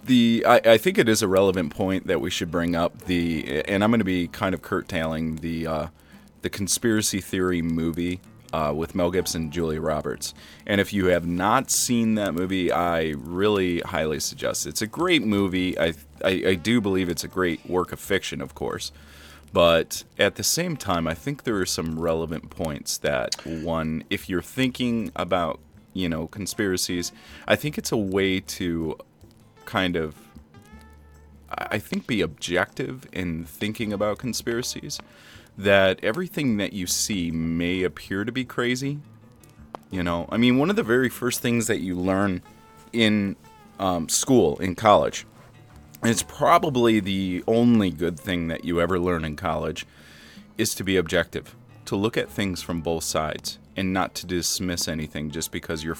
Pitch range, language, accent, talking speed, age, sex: 80-110 Hz, English, American, 175 wpm, 30-49, male